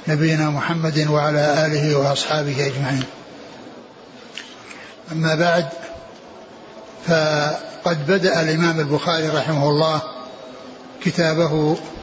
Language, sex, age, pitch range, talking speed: Arabic, male, 60-79, 160-175 Hz, 75 wpm